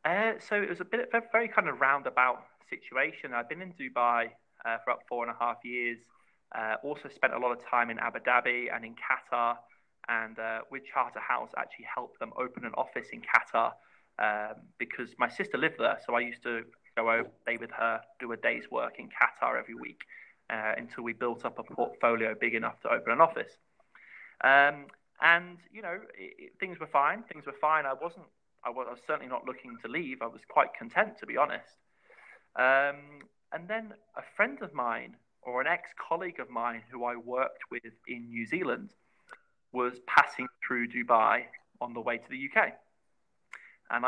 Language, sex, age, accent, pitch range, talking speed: English, male, 20-39, British, 120-155 Hz, 195 wpm